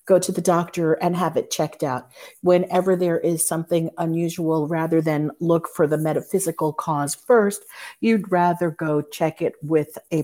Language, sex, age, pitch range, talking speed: English, female, 50-69, 145-180 Hz, 170 wpm